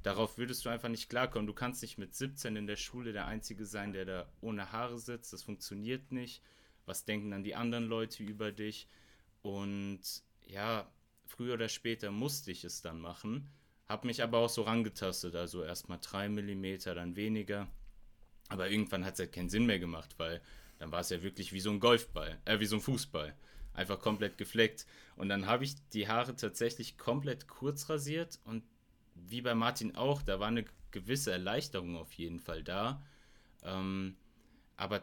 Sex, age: male, 30-49